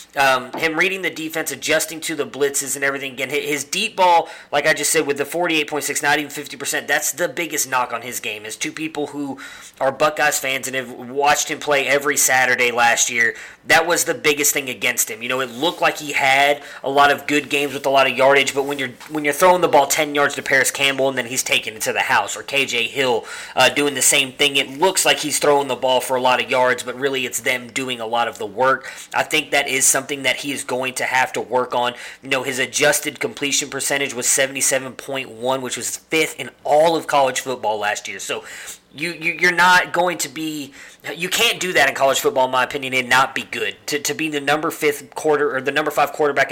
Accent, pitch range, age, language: American, 130-150 Hz, 20-39, English